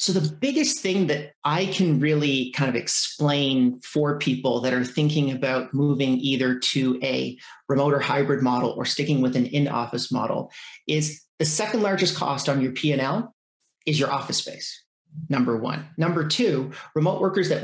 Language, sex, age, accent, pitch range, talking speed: English, male, 40-59, American, 140-170 Hz, 170 wpm